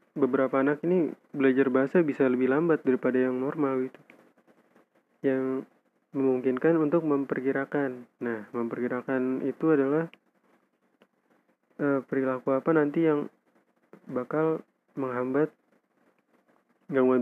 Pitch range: 130-150 Hz